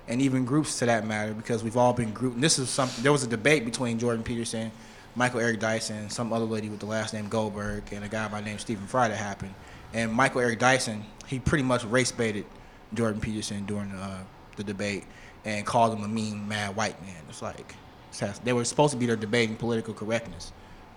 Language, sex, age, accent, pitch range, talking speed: English, male, 20-39, American, 110-130 Hz, 220 wpm